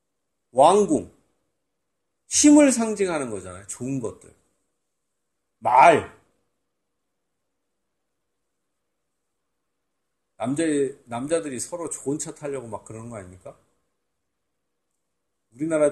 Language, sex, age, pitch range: Korean, male, 40-59, 125-190 Hz